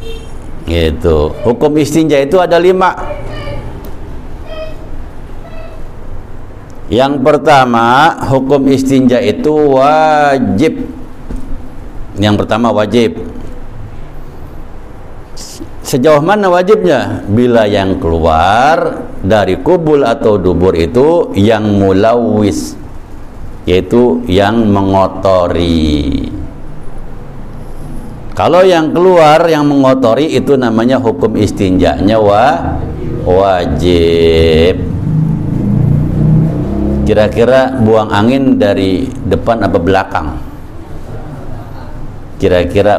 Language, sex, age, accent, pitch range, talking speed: Indonesian, male, 60-79, native, 95-135 Hz, 70 wpm